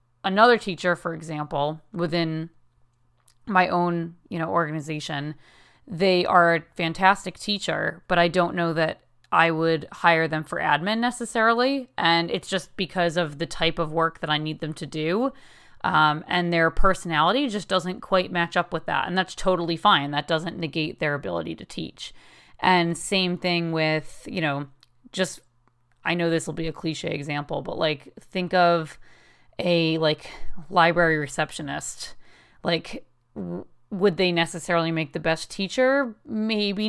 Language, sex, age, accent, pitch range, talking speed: English, female, 30-49, American, 160-190 Hz, 155 wpm